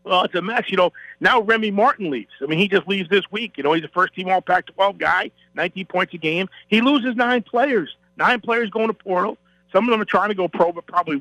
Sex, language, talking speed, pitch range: male, English, 250 wpm, 175-210 Hz